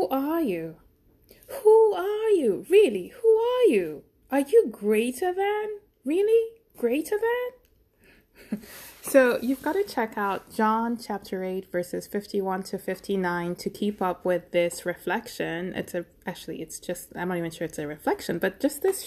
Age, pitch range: 20-39, 180-270 Hz